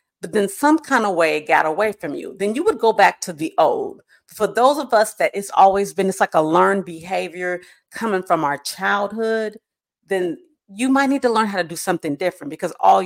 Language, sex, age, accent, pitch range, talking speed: English, female, 40-59, American, 160-205 Hz, 225 wpm